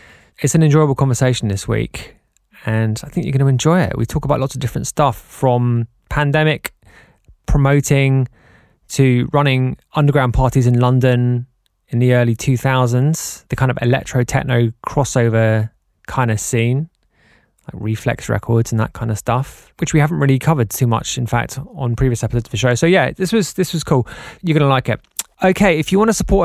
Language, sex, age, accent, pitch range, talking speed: English, male, 20-39, British, 125-155 Hz, 195 wpm